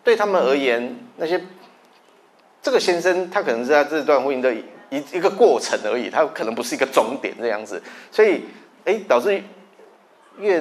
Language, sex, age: Chinese, male, 30-49